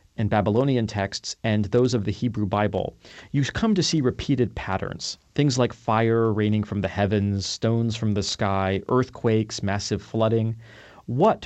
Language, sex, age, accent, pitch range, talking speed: English, male, 40-59, American, 105-135 Hz, 155 wpm